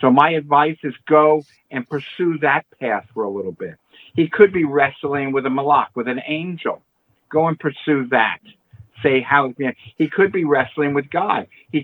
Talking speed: 195 wpm